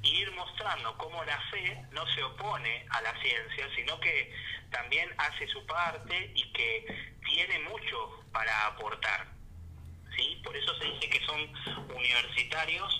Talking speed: 150 wpm